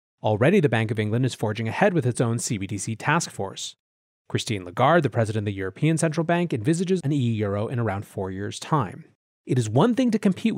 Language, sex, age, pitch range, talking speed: English, male, 30-49, 115-165 Hz, 210 wpm